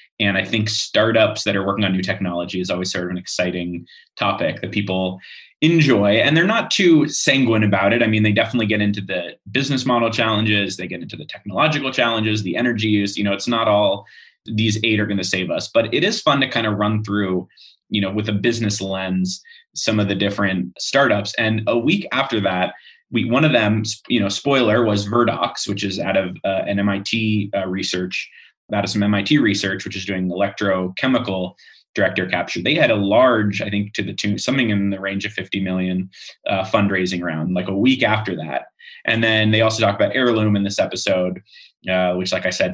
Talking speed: 215 wpm